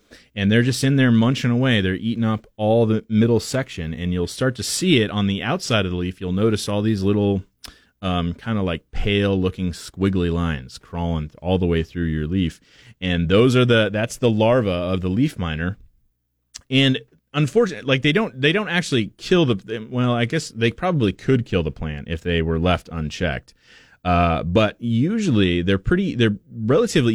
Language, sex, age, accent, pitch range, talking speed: English, male, 30-49, American, 85-115 Hz, 195 wpm